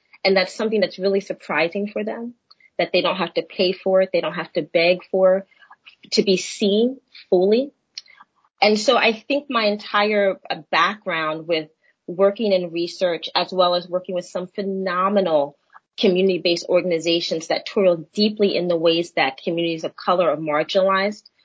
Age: 30-49